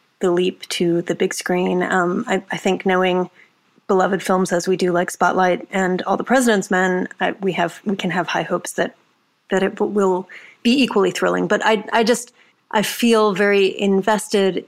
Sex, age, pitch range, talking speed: female, 30-49, 180-205 Hz, 190 wpm